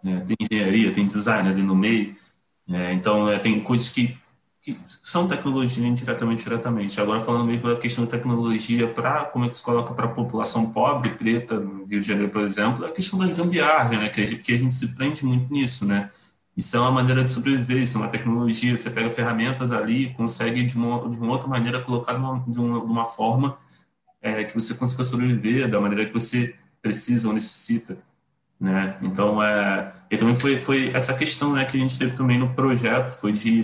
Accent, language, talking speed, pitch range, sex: Brazilian, Portuguese, 205 wpm, 110-130 Hz, male